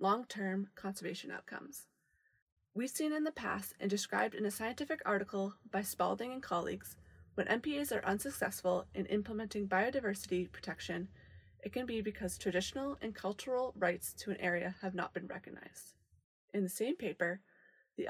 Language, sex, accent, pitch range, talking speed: English, female, American, 185-225 Hz, 155 wpm